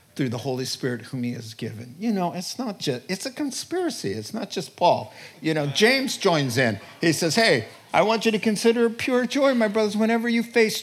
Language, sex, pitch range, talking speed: English, male, 135-225 Hz, 220 wpm